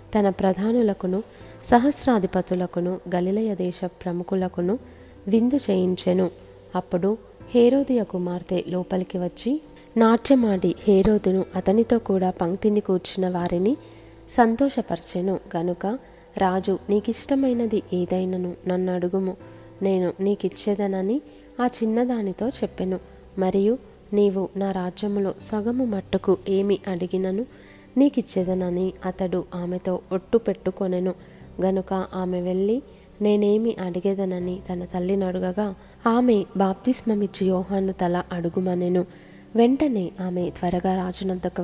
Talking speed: 90 wpm